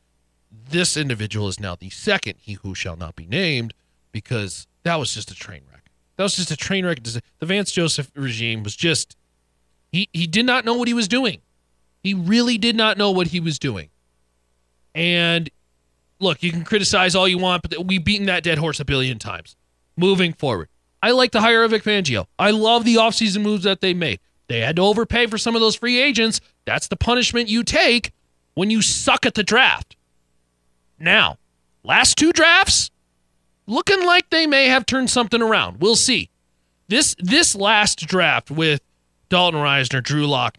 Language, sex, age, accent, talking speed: English, male, 30-49, American, 190 wpm